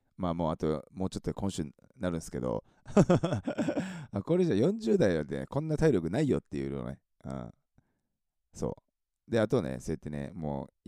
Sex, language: male, Japanese